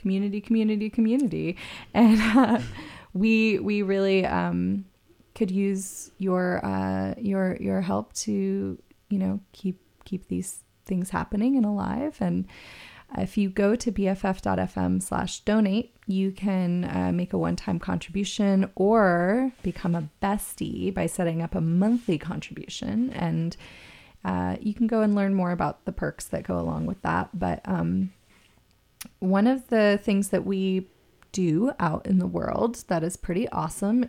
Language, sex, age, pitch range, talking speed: English, female, 20-39, 165-205 Hz, 150 wpm